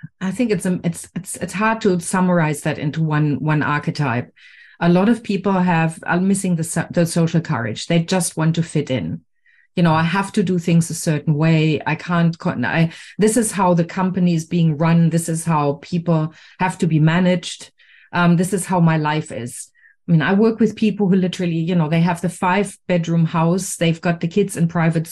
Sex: female